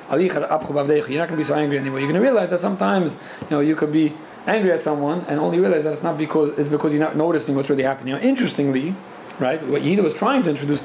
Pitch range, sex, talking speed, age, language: 140-165 Hz, male, 260 wpm, 40-59, English